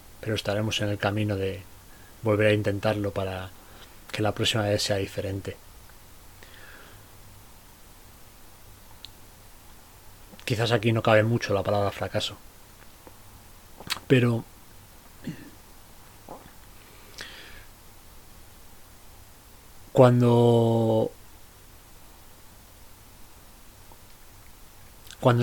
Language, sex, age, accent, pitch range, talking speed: Spanish, male, 30-49, Spanish, 100-115 Hz, 65 wpm